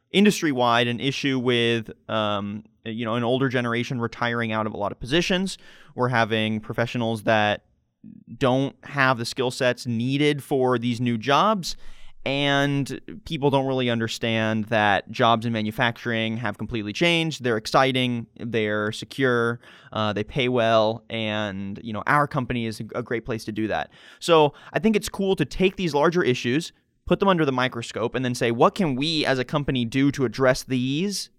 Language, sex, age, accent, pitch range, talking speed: English, male, 20-39, American, 115-145 Hz, 175 wpm